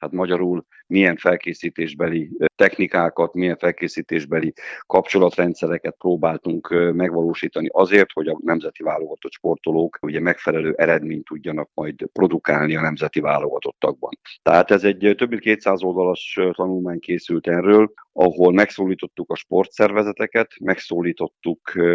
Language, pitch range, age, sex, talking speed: Hungarian, 85-105 Hz, 50-69, male, 105 wpm